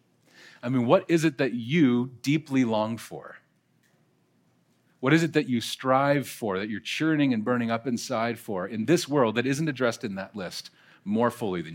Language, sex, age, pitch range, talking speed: English, male, 40-59, 115-150 Hz, 190 wpm